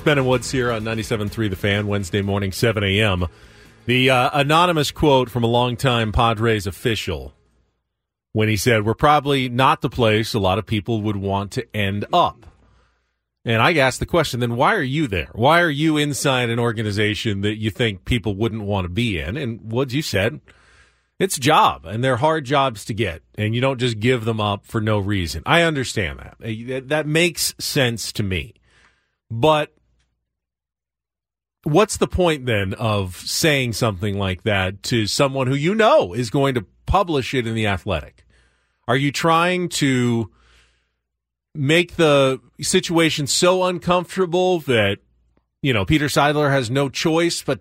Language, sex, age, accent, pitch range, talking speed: English, male, 40-59, American, 100-150 Hz, 170 wpm